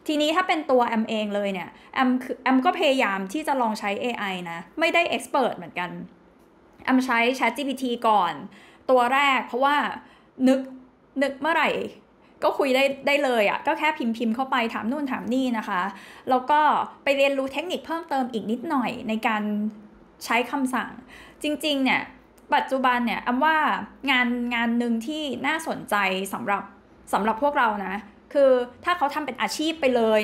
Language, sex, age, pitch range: Thai, female, 20-39, 215-275 Hz